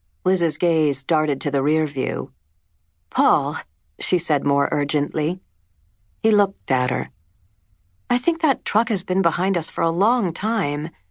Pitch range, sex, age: 125-180 Hz, female, 50-69